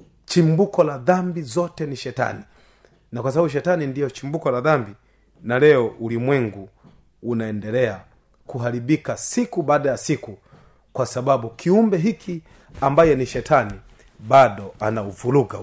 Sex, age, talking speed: male, 30-49, 125 wpm